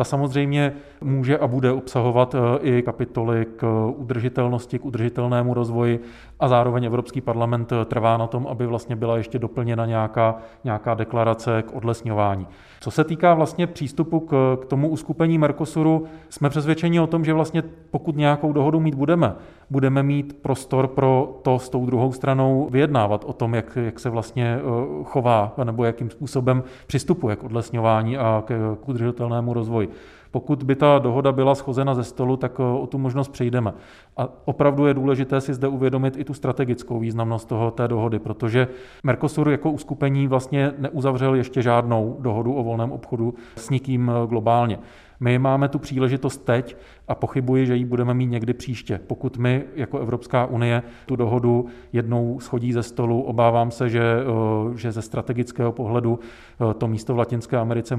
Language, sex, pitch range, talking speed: Czech, male, 115-135 Hz, 160 wpm